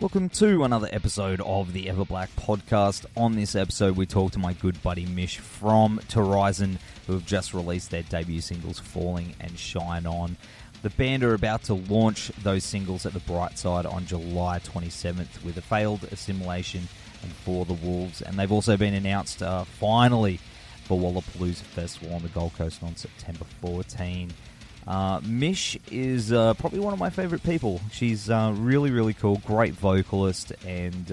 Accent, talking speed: Australian, 170 wpm